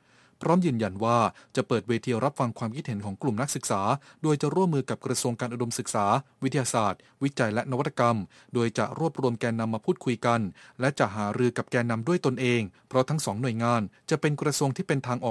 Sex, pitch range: male, 115-140 Hz